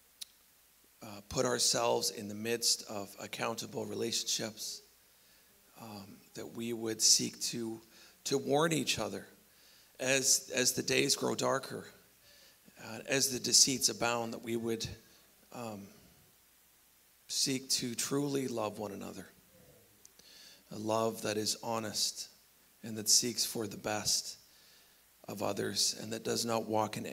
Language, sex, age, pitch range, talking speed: English, male, 40-59, 110-125 Hz, 130 wpm